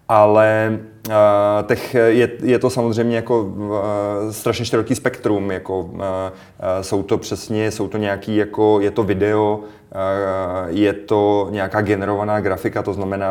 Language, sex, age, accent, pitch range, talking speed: Czech, male, 30-49, native, 100-105 Hz, 145 wpm